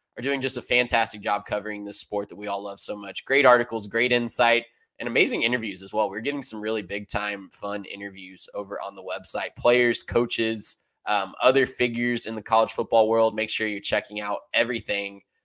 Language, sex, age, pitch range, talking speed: English, male, 10-29, 105-125 Hz, 200 wpm